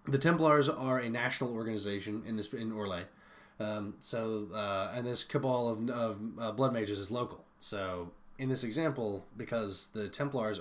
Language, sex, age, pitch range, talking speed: English, male, 20-39, 105-150 Hz, 170 wpm